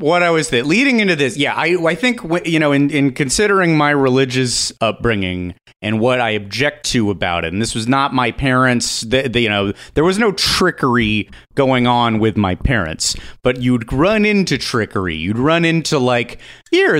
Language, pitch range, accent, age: English, 115-160 Hz, American, 30-49